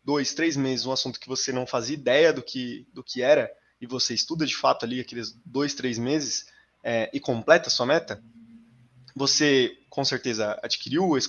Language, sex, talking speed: Portuguese, male, 190 wpm